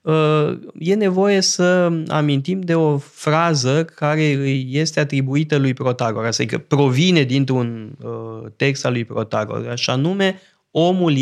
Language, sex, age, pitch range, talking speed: Romanian, male, 20-39, 130-165 Hz, 125 wpm